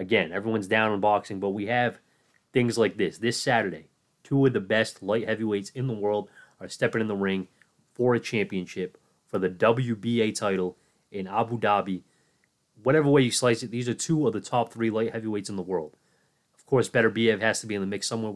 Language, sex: English, male